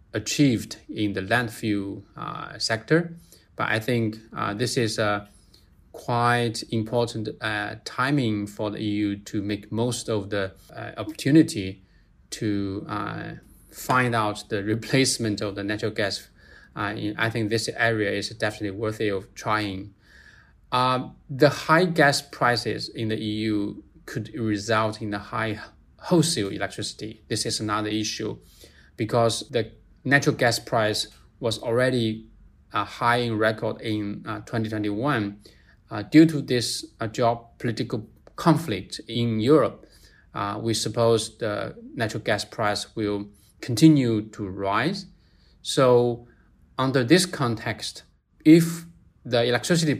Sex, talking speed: male, 130 wpm